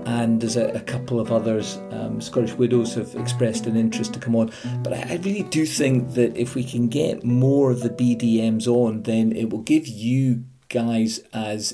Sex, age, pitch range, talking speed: male, 50-69, 110-125 Hz, 205 wpm